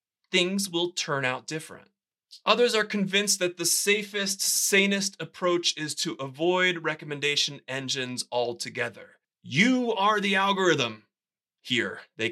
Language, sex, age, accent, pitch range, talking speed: English, male, 30-49, American, 145-190 Hz, 120 wpm